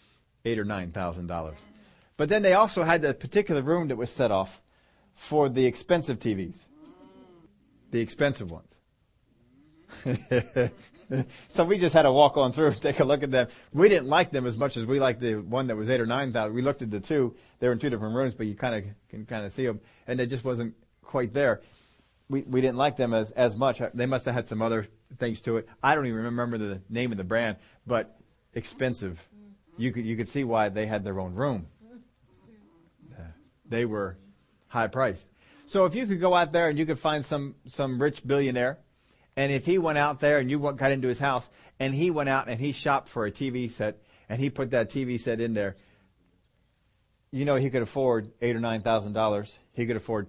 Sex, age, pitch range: male, 40-59, 110-140 Hz